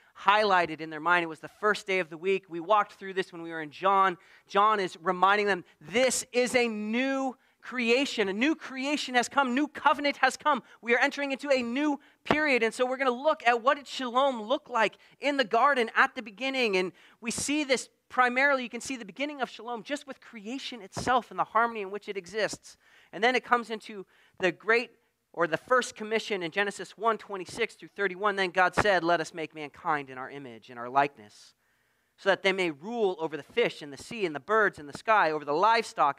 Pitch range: 185-245 Hz